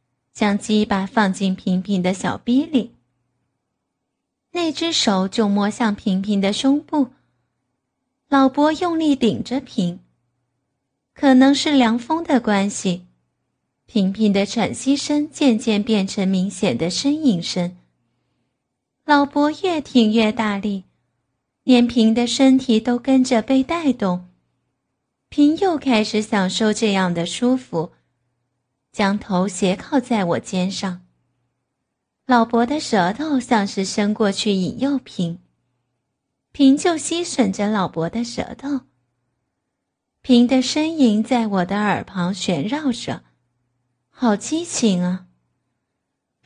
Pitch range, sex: 180-255 Hz, female